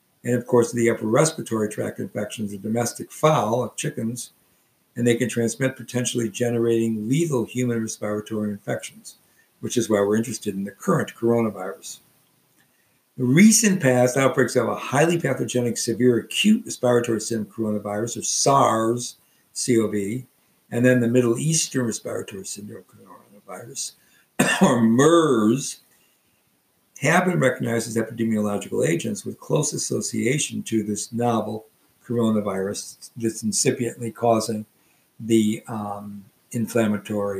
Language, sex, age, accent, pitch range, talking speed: English, male, 60-79, American, 105-125 Hz, 125 wpm